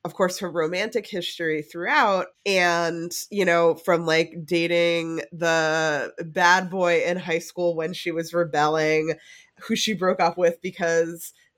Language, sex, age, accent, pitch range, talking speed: English, female, 20-39, American, 165-200 Hz, 145 wpm